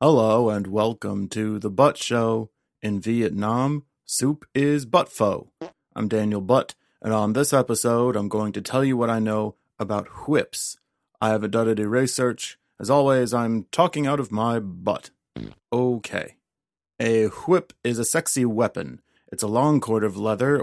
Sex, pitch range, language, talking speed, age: male, 105-130 Hz, English, 165 wpm, 30-49